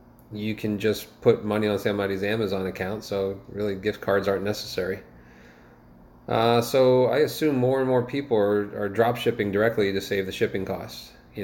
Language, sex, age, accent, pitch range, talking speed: English, male, 30-49, American, 95-105 Hz, 180 wpm